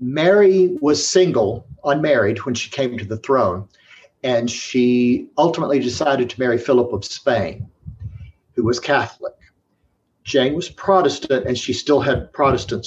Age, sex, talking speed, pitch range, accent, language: 50-69, male, 140 wpm, 115-140 Hz, American, English